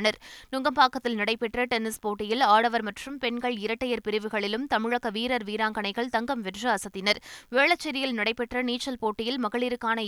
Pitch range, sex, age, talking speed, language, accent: 220-270 Hz, female, 20-39, 120 wpm, Tamil, native